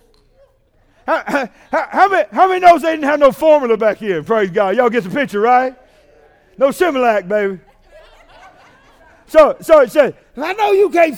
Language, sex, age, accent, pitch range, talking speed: English, male, 50-69, American, 260-330 Hz, 170 wpm